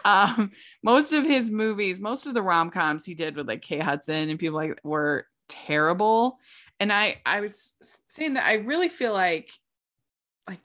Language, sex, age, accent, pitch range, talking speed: English, female, 20-39, American, 155-210 Hz, 175 wpm